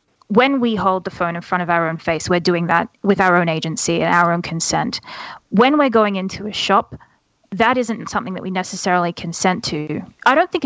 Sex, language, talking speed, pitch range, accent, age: female, English, 220 wpm, 180-220 Hz, Australian, 20-39